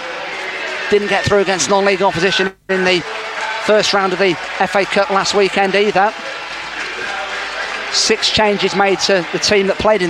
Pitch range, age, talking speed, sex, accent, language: 175-200 Hz, 40-59, 155 wpm, male, British, English